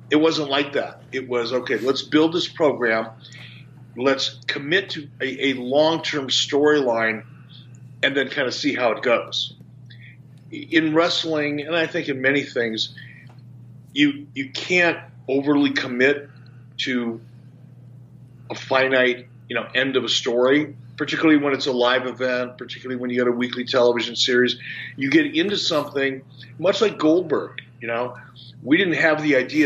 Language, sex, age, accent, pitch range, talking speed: English, male, 50-69, American, 120-140 Hz, 155 wpm